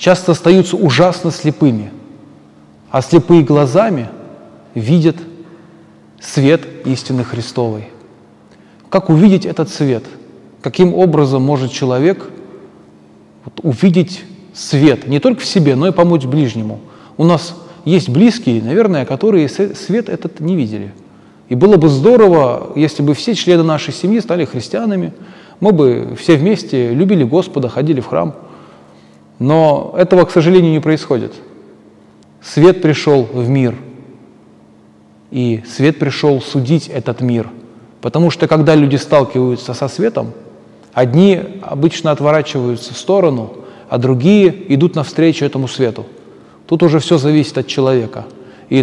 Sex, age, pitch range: male, 20-39, 125-170 Hz